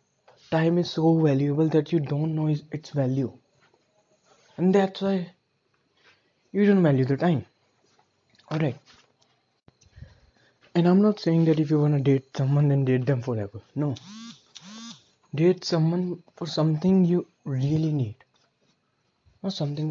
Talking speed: 140 wpm